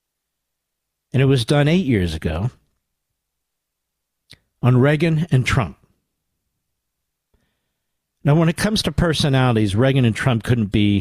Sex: male